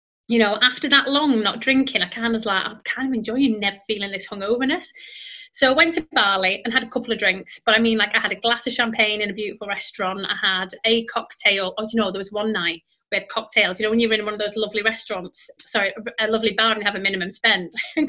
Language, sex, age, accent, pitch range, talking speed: English, female, 30-49, British, 205-250 Hz, 265 wpm